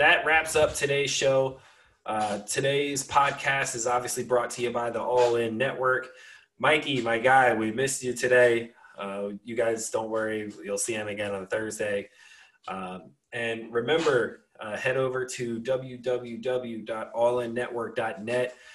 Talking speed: 140 wpm